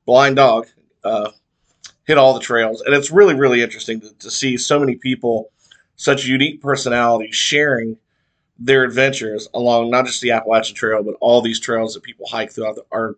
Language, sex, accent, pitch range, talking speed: English, male, American, 115-140 Hz, 180 wpm